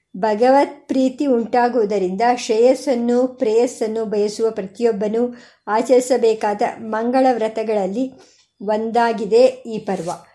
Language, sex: Kannada, male